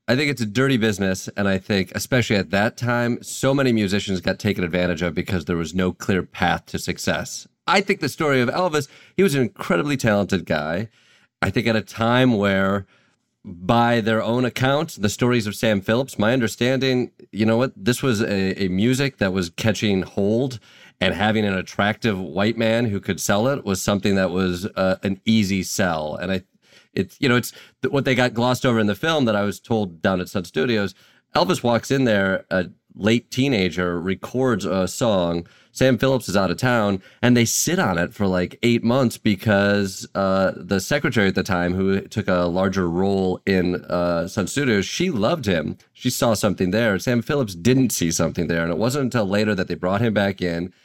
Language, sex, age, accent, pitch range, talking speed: English, male, 30-49, American, 95-120 Hz, 205 wpm